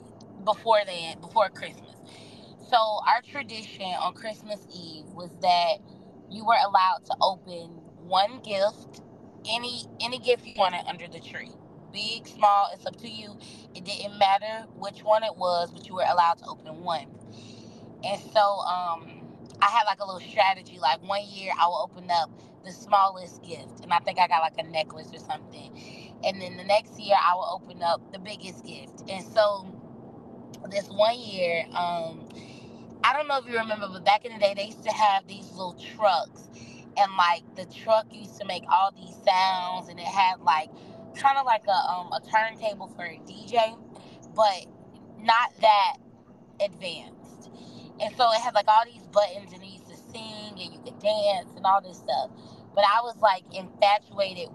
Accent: American